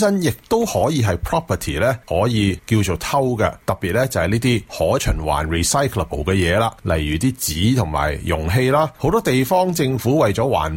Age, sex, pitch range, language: 30-49, male, 100-155 Hz, Chinese